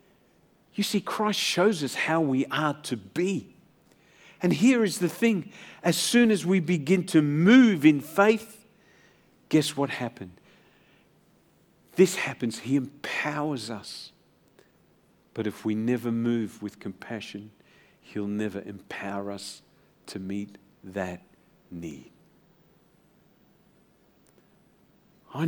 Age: 50-69